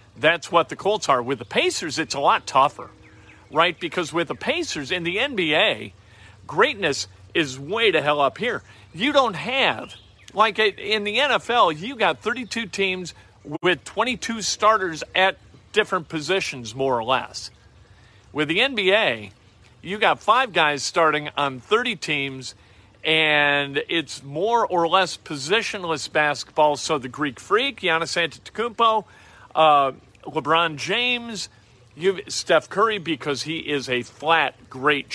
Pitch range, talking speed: 135-185 Hz, 140 wpm